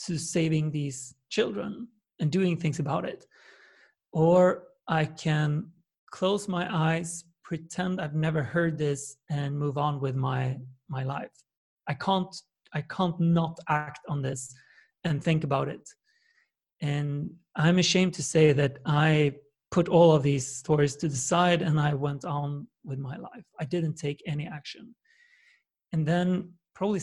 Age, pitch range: 30-49, 150-175 Hz